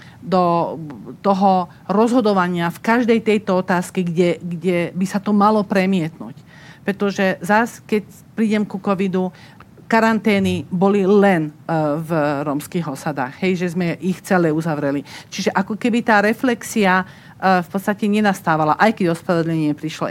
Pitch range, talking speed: 150-185 Hz, 135 wpm